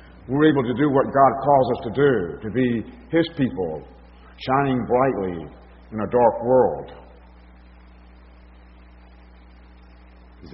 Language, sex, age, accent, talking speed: English, male, 50-69, American, 120 wpm